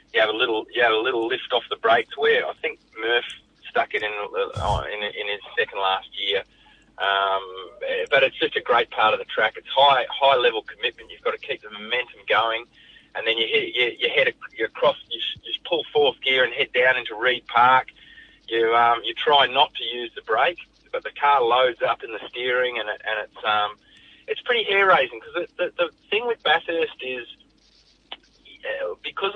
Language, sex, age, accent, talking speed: English, male, 20-39, Australian, 210 wpm